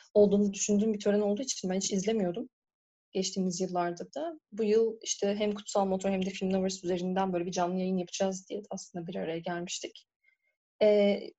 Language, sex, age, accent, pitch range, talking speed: Turkish, female, 30-49, native, 190-235 Hz, 180 wpm